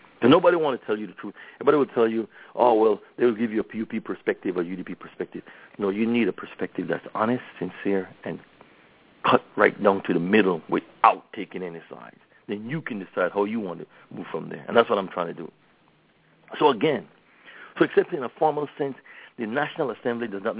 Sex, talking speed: male, 215 wpm